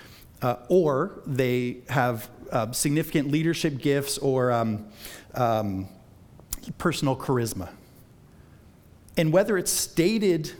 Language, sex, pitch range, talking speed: English, male, 125-175 Hz, 95 wpm